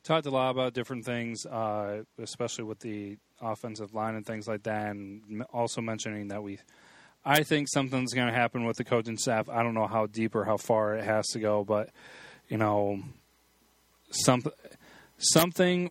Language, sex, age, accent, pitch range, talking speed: English, male, 30-49, American, 110-125 Hz, 175 wpm